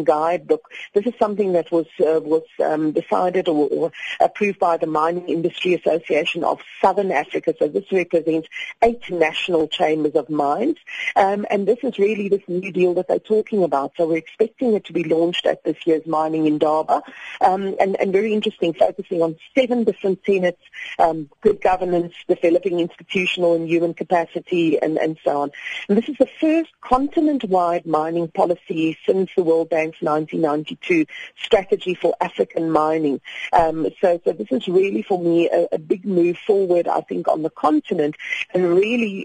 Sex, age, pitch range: female, 40-59, 160-205 Hz